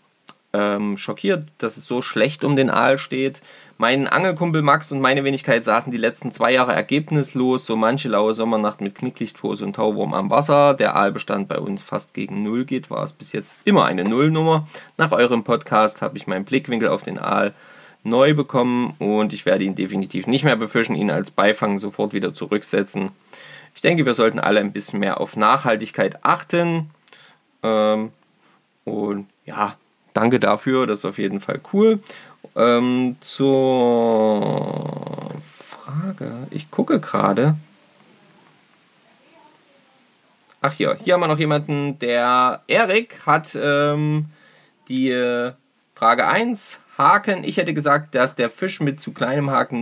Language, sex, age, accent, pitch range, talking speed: German, male, 20-39, German, 110-150 Hz, 150 wpm